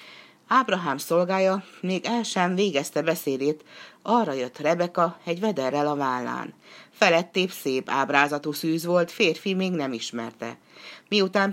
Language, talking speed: Hungarian, 125 wpm